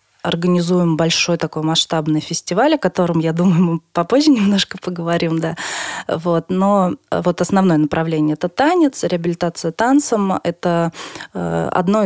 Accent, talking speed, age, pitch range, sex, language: native, 110 wpm, 20-39, 165-190 Hz, female, Russian